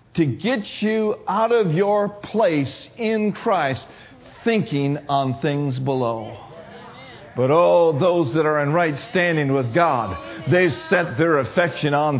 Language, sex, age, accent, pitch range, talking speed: English, male, 50-69, American, 145-220 Hz, 140 wpm